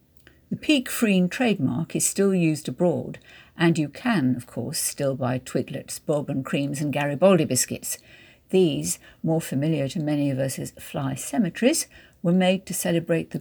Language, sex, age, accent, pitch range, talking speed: English, female, 60-79, British, 140-180 Hz, 160 wpm